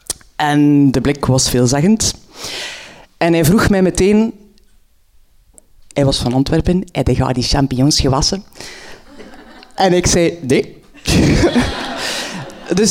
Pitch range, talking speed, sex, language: 150-200 Hz, 110 wpm, female, Dutch